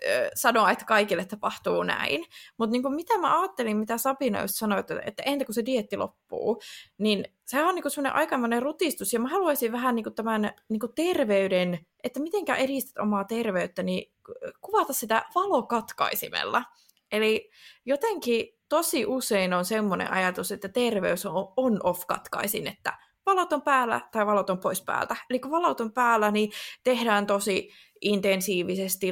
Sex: female